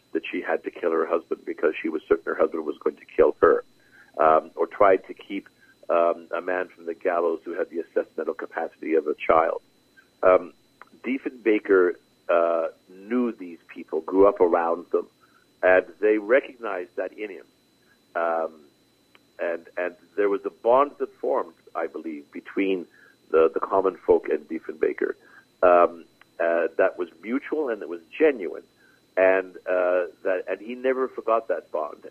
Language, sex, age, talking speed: English, male, 50-69, 165 wpm